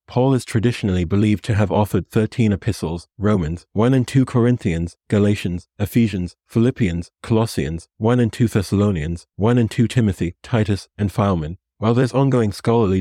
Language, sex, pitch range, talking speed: English, male, 95-115 Hz, 150 wpm